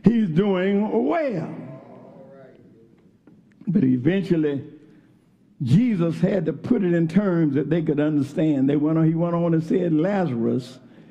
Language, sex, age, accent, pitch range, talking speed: English, male, 60-79, American, 160-210 Hz, 135 wpm